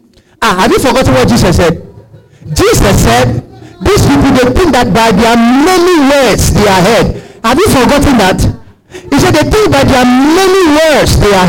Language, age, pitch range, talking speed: English, 50-69, 200-320 Hz, 190 wpm